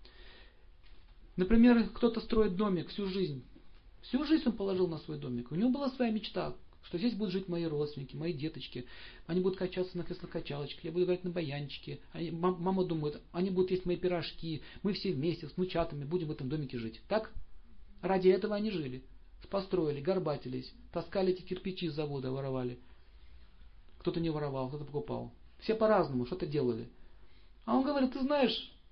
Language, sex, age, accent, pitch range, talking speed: Russian, male, 40-59, native, 120-185 Hz, 165 wpm